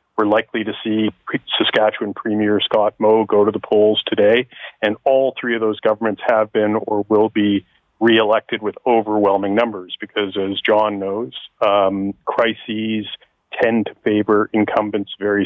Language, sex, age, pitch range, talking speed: English, male, 40-59, 100-110 Hz, 150 wpm